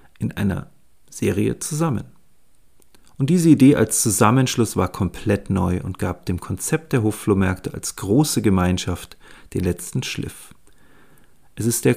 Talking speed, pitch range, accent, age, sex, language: 135 wpm, 100-120 Hz, German, 40-59, male, German